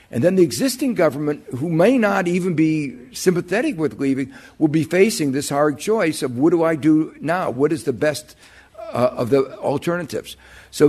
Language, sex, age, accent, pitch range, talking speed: English, male, 60-79, American, 110-145 Hz, 185 wpm